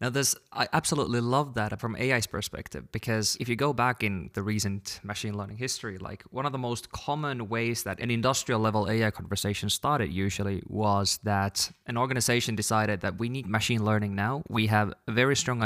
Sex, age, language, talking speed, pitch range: male, 20-39, English, 190 wpm, 105-125 Hz